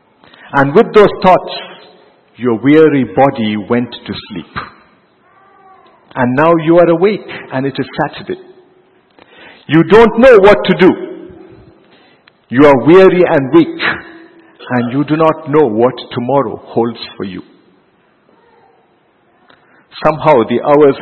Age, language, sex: 50-69, English, male